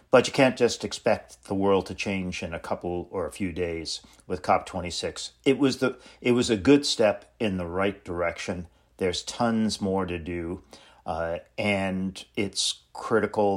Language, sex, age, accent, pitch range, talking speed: English, male, 50-69, American, 90-110 Hz, 175 wpm